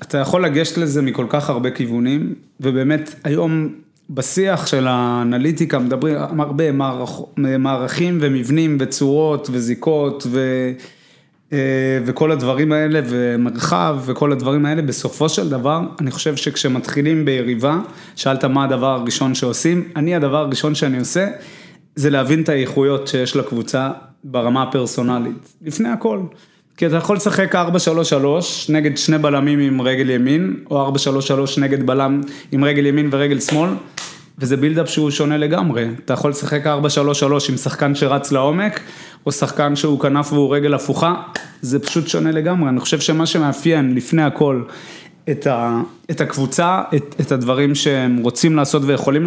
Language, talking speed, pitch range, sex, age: Hebrew, 140 wpm, 135-160 Hz, male, 20-39